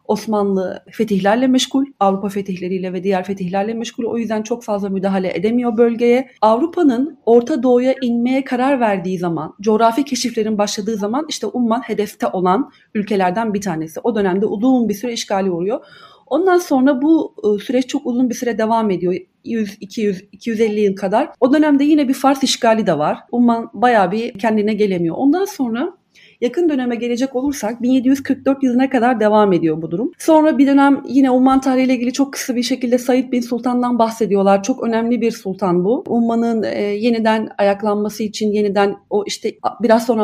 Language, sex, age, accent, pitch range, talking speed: Turkish, female, 40-59, native, 205-255 Hz, 165 wpm